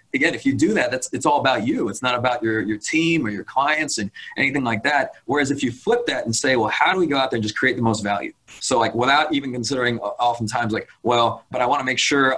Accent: American